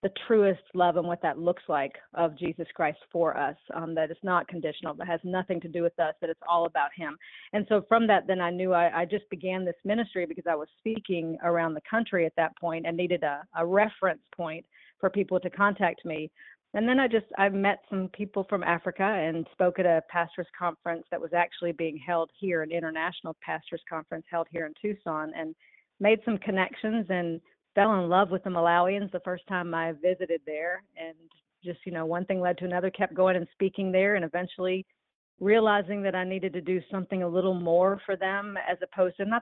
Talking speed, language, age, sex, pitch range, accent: 220 wpm, English, 40-59, female, 170-195 Hz, American